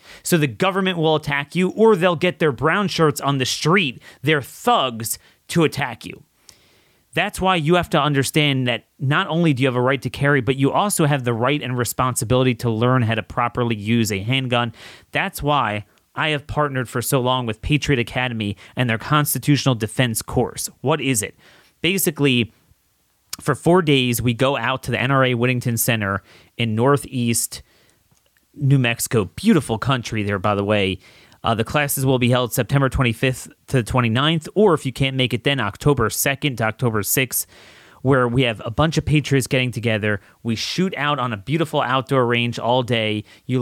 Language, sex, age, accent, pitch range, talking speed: English, male, 30-49, American, 115-145 Hz, 185 wpm